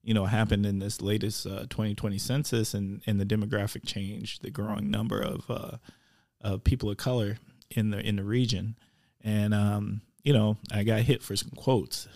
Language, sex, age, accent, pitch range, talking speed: English, male, 20-39, American, 105-120 Hz, 190 wpm